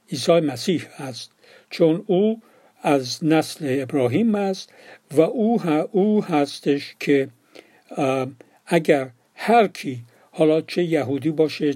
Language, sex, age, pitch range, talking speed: Persian, male, 60-79, 140-175 Hz, 100 wpm